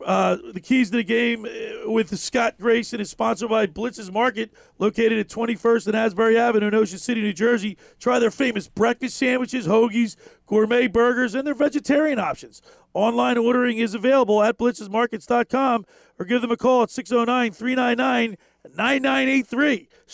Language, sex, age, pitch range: English, male, 40-59, 215-250 Hz